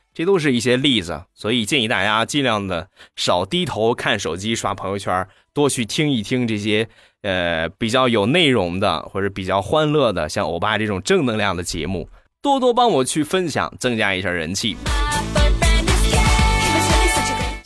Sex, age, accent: male, 20-39, native